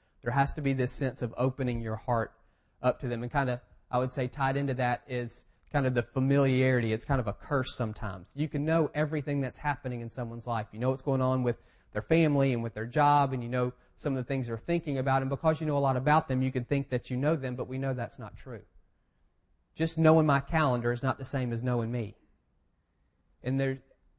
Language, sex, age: English, male, 40-59